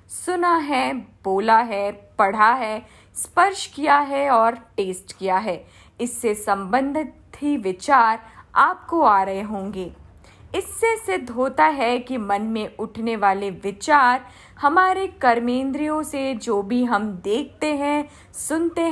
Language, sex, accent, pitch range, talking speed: Hindi, female, native, 205-300 Hz, 125 wpm